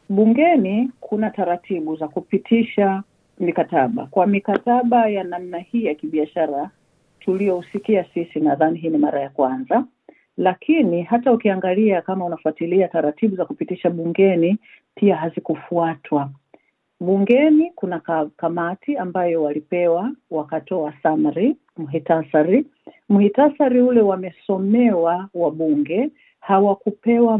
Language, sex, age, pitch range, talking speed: Swahili, female, 50-69, 170-230 Hz, 100 wpm